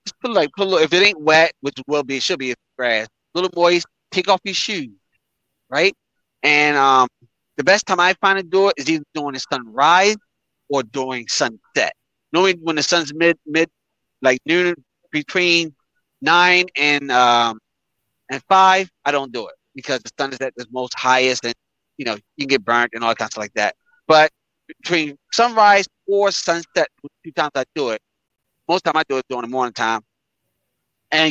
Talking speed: 200 wpm